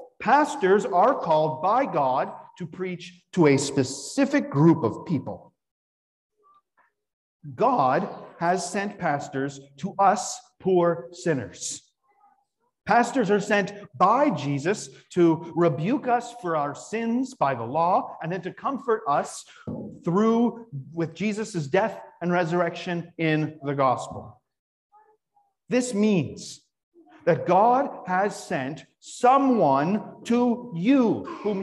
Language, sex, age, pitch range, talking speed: English, male, 50-69, 155-240 Hz, 110 wpm